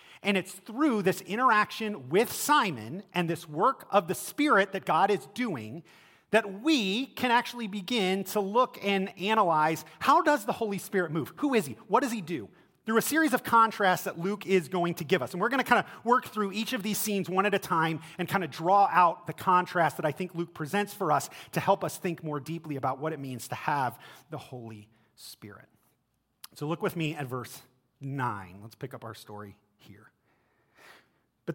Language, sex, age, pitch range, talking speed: English, male, 30-49, 160-215 Hz, 205 wpm